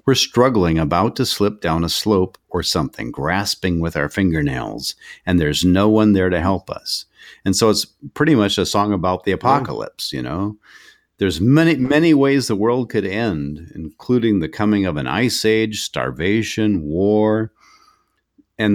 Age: 50-69